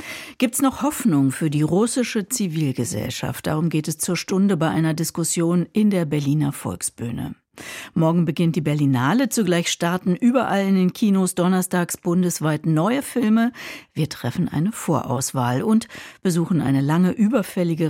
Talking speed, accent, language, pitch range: 145 wpm, German, German, 160-210 Hz